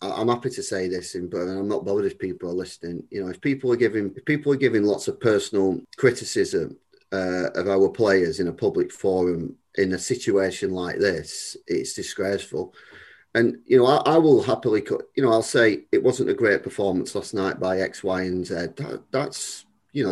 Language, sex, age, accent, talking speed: English, male, 30-49, British, 210 wpm